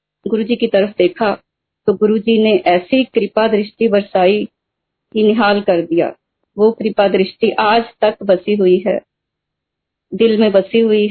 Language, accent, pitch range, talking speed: Hindi, native, 195-225 Hz, 145 wpm